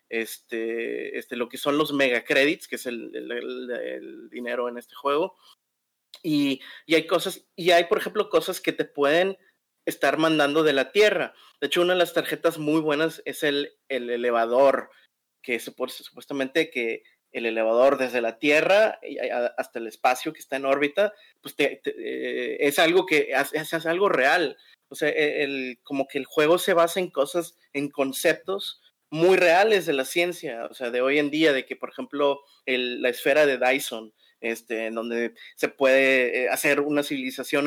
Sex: male